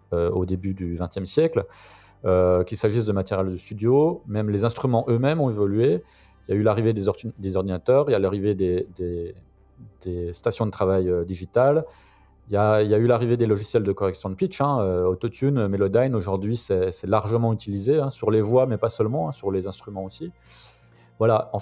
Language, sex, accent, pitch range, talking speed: French, male, French, 95-125 Hz, 210 wpm